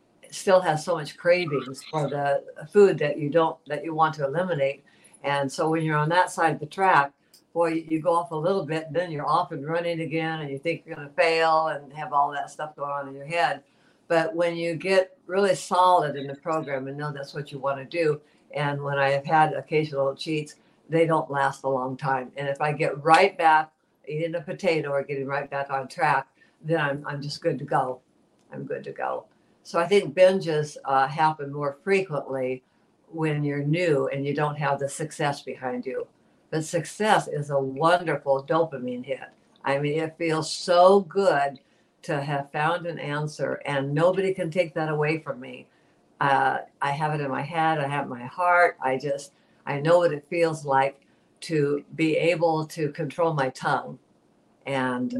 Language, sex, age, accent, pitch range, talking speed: English, female, 60-79, American, 140-165 Hz, 200 wpm